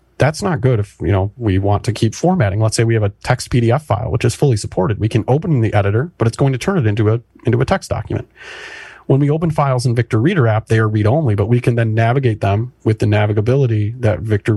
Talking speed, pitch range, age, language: 250 wpm, 105-120 Hz, 30-49, English